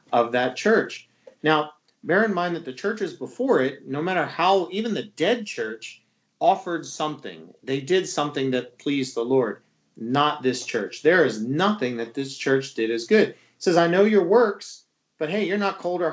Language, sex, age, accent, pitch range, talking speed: English, male, 40-59, American, 125-185 Hz, 195 wpm